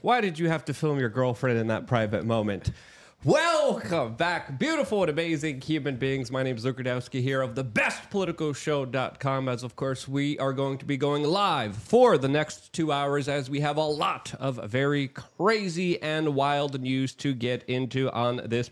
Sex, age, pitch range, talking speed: male, 30-49, 135-195 Hz, 185 wpm